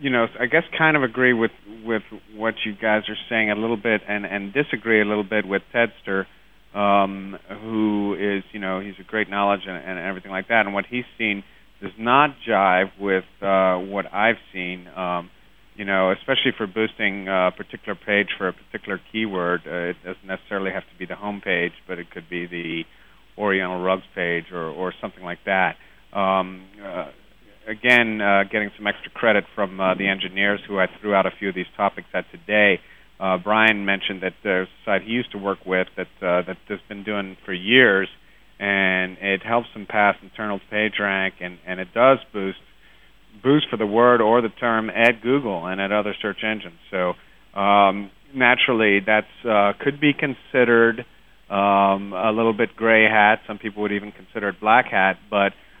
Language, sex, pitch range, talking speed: English, male, 95-110 Hz, 195 wpm